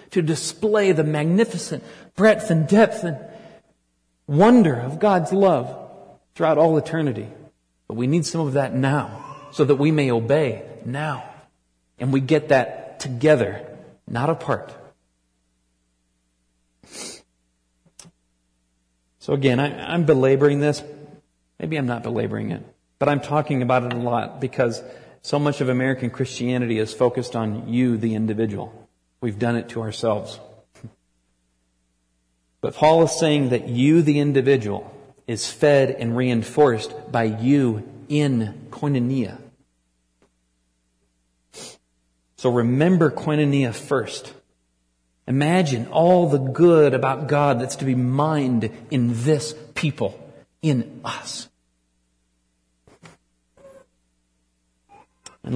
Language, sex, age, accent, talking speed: English, male, 40-59, American, 115 wpm